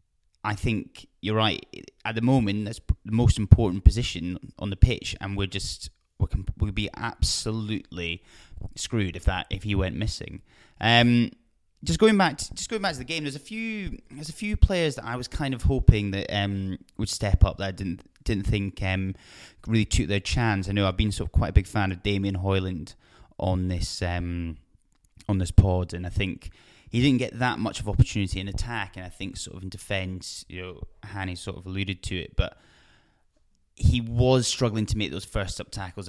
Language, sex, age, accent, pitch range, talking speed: English, male, 20-39, British, 90-110 Hz, 210 wpm